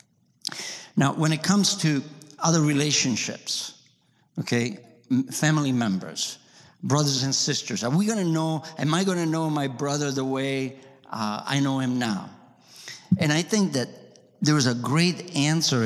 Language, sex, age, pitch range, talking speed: English, male, 60-79, 130-160 Hz, 155 wpm